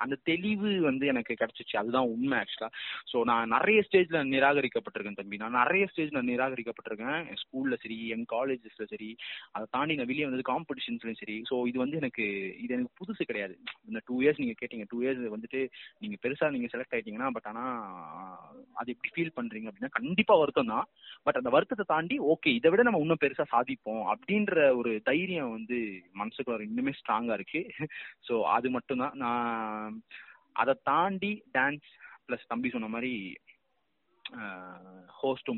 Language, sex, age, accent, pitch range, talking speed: Tamil, male, 20-39, native, 110-145 Hz, 155 wpm